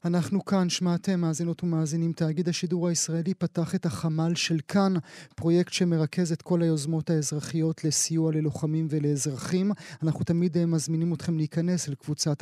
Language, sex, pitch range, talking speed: Hebrew, male, 155-180 Hz, 140 wpm